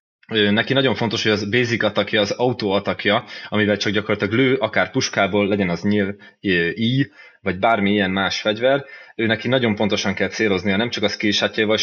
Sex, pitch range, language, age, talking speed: male, 100-115 Hz, Hungarian, 20-39, 180 wpm